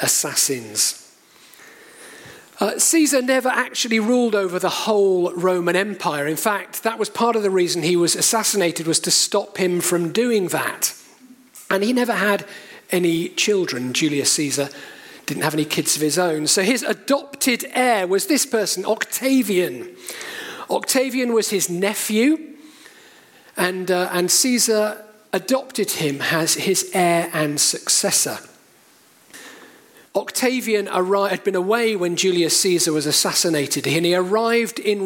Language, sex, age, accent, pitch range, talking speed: English, male, 40-59, British, 175-245 Hz, 135 wpm